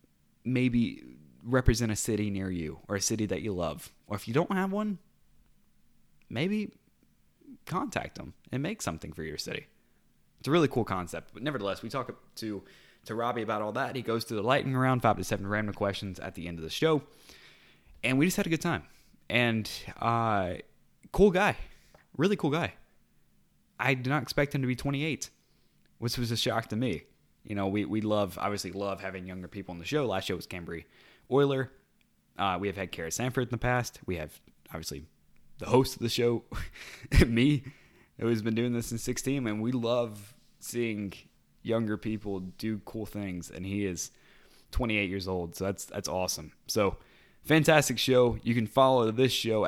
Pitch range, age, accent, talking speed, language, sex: 95-125 Hz, 20-39, American, 190 wpm, English, male